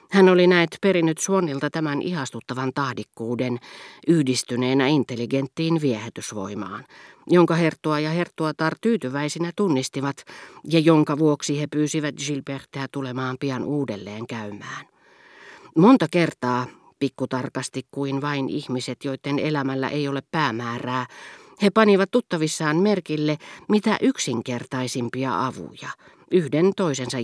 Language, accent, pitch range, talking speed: Finnish, native, 125-160 Hz, 105 wpm